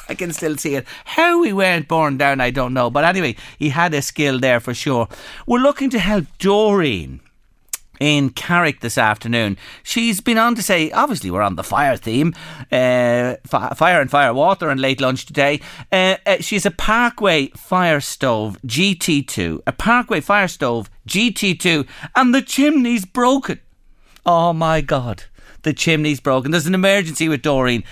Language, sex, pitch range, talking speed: English, male, 135-205 Hz, 170 wpm